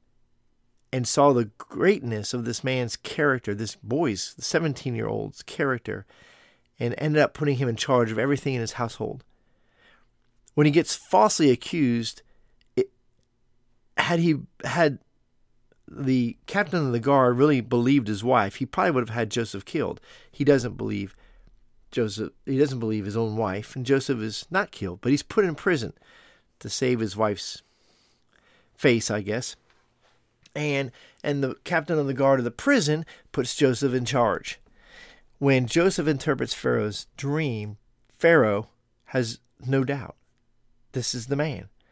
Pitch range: 115-140 Hz